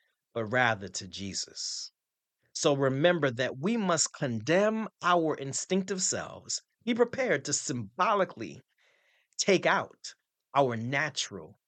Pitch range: 120-175 Hz